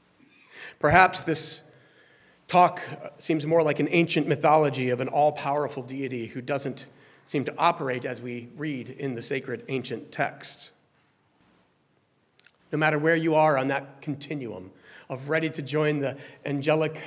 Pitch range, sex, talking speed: 130-160 Hz, male, 140 wpm